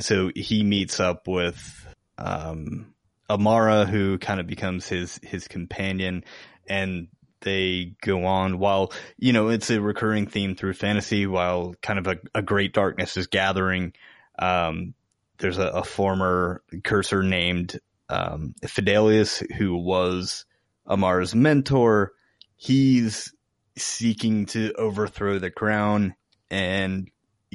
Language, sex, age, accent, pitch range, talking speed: English, male, 20-39, American, 90-110 Hz, 120 wpm